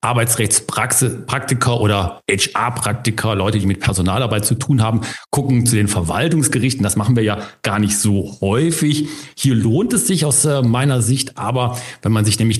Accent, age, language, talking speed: German, 40-59, German, 160 wpm